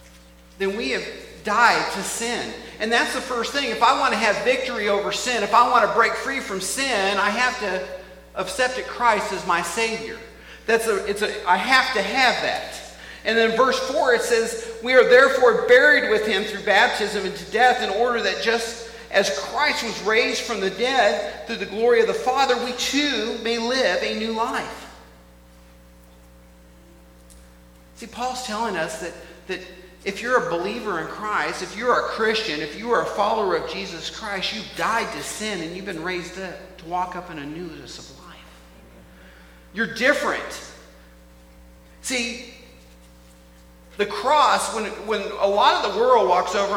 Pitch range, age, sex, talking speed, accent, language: 155-245 Hz, 50-69, male, 180 wpm, American, English